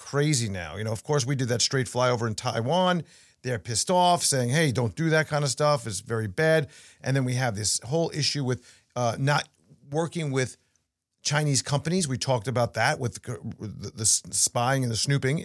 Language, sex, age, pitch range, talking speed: English, male, 40-59, 120-155 Hz, 200 wpm